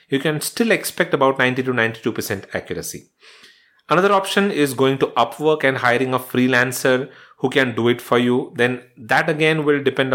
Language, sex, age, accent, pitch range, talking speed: English, male, 30-49, Indian, 120-150 Hz, 175 wpm